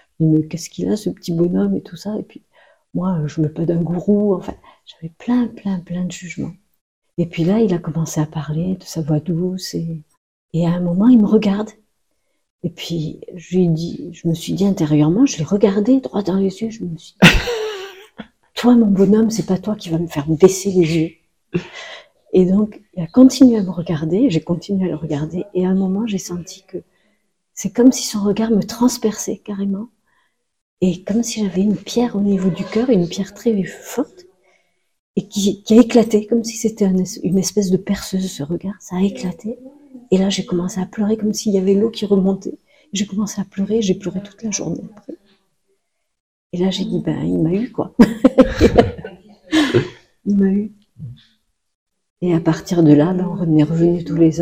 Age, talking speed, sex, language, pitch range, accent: 50-69, 205 wpm, female, French, 170-215 Hz, French